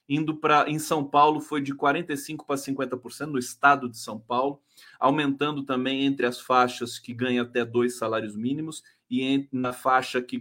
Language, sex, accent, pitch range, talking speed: Portuguese, male, Brazilian, 130-210 Hz, 175 wpm